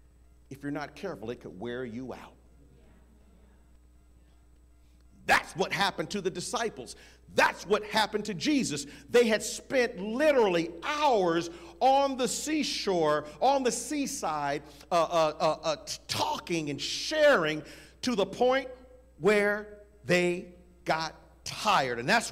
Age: 50-69